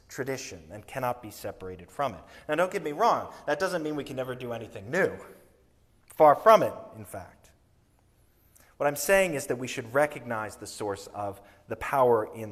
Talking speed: 190 wpm